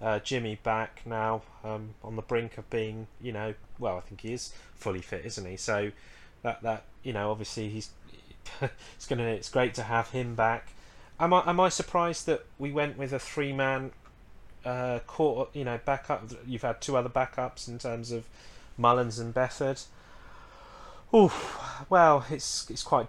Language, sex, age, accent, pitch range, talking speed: English, male, 30-49, British, 110-125 Hz, 180 wpm